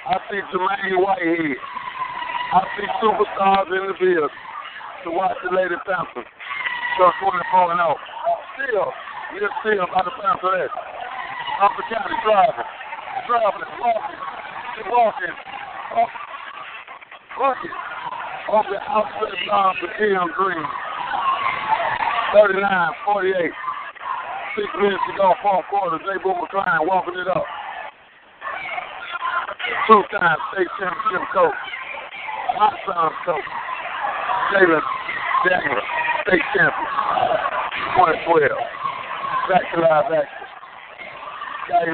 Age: 60-79